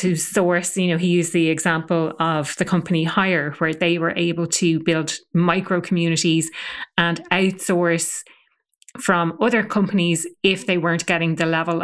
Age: 30-49